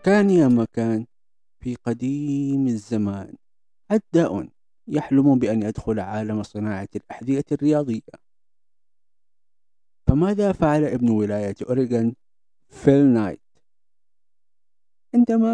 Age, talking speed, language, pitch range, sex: 50-69, 85 wpm, Arabic, 115-180 Hz, male